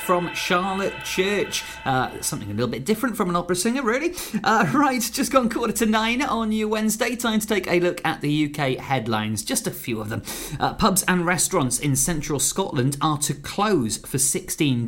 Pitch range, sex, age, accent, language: 120-170 Hz, male, 30-49, British, Japanese